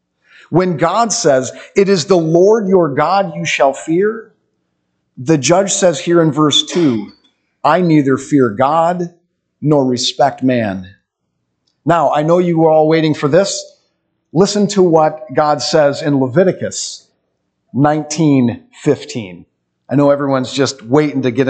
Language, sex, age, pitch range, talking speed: English, male, 40-59, 125-165 Hz, 140 wpm